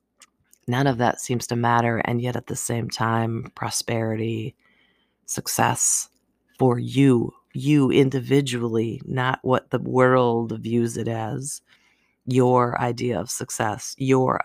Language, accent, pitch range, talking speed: English, American, 115-140 Hz, 125 wpm